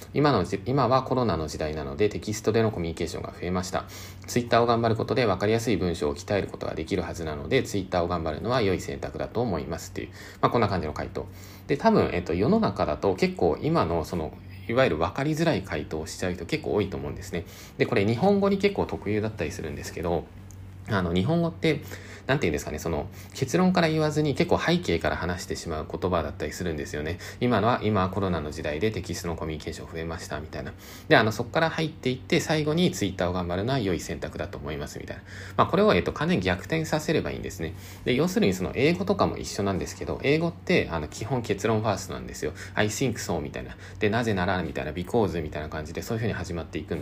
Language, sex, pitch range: Japanese, male, 85-115 Hz